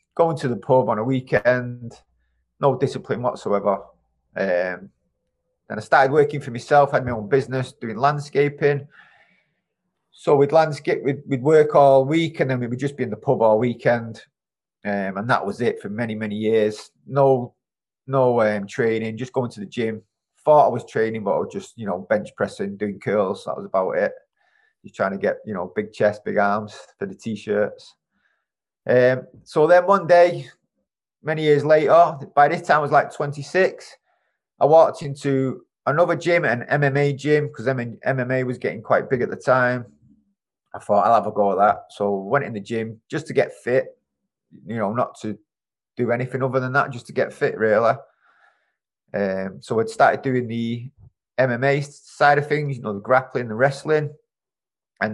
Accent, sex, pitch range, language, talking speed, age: British, male, 115-145 Hz, English, 190 wpm, 30-49